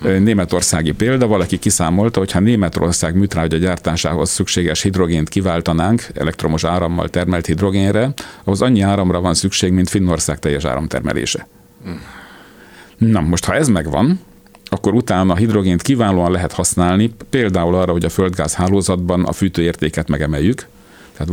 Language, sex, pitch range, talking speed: Hungarian, male, 85-100 Hz, 135 wpm